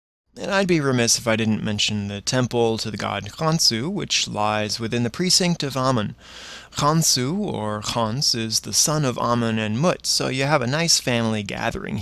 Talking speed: 190 wpm